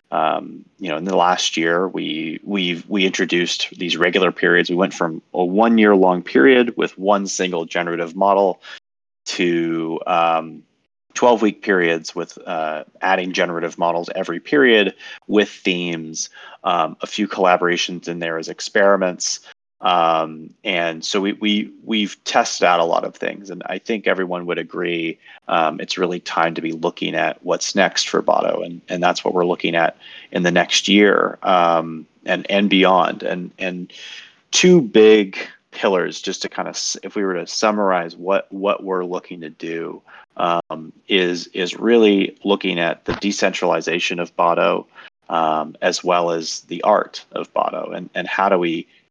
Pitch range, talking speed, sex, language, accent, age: 85-100 Hz, 165 wpm, male, English, American, 30-49